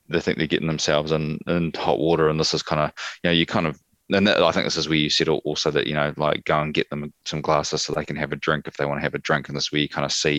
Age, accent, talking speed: 20-39, Australian, 345 wpm